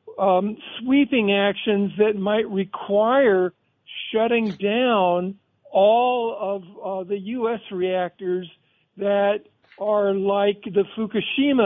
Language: English